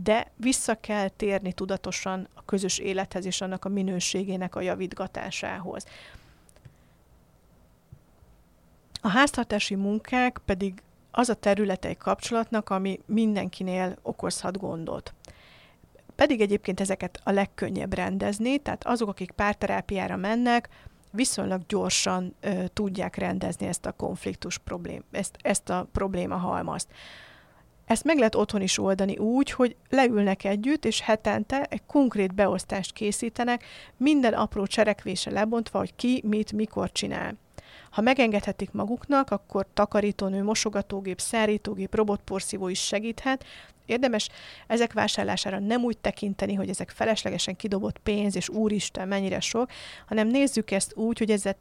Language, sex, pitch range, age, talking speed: Hungarian, female, 195-225 Hz, 30-49, 125 wpm